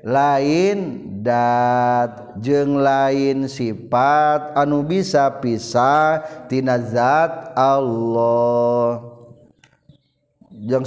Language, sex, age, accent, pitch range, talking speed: Indonesian, male, 40-59, native, 125-180 Hz, 65 wpm